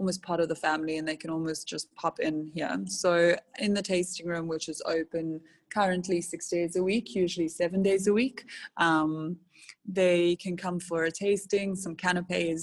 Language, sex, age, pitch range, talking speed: English, female, 20-39, 165-190 Hz, 190 wpm